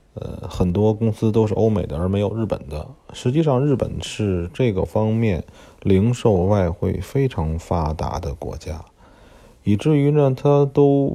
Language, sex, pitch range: Chinese, male, 85-110 Hz